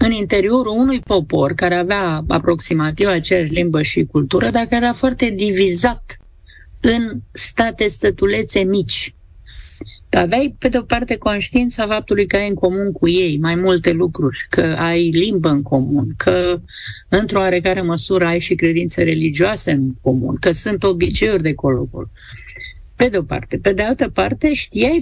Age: 50-69